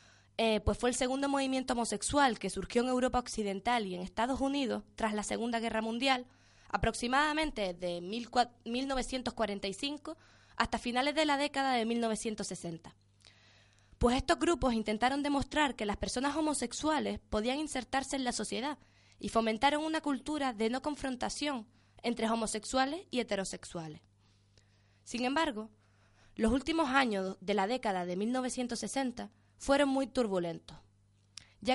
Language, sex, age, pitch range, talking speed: Spanish, female, 20-39, 195-260 Hz, 135 wpm